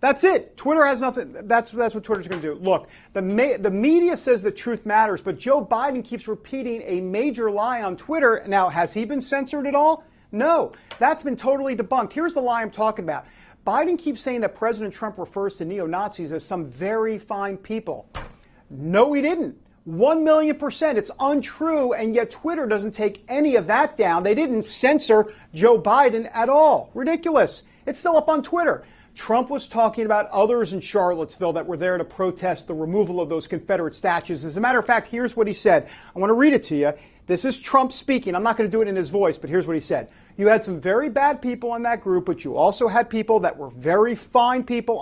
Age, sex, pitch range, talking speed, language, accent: 40-59, male, 200-265 Hz, 215 wpm, English, American